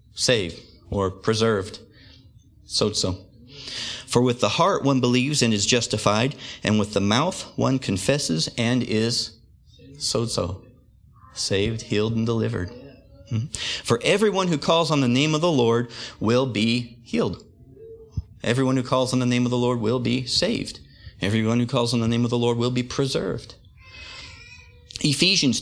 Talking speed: 150 wpm